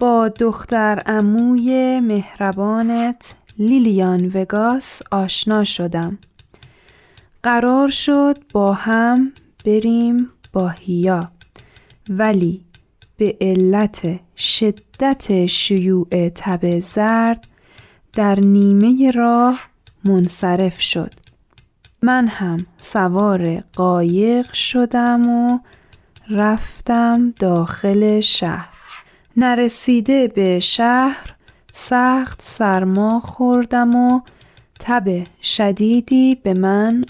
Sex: female